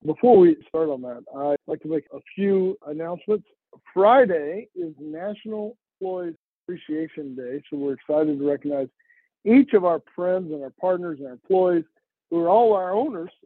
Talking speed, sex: 170 wpm, male